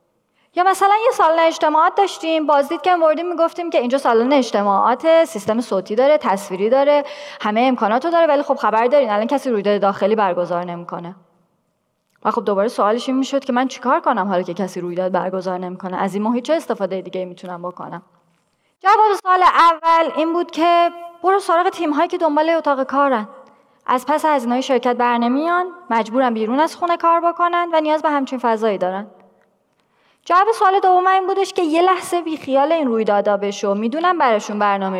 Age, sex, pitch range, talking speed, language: 20-39, female, 205-325 Hz, 175 wpm, Persian